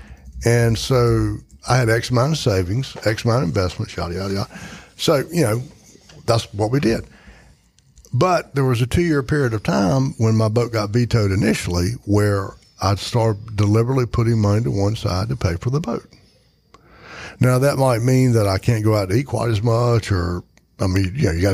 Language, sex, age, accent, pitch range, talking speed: English, male, 60-79, American, 95-120 Hz, 200 wpm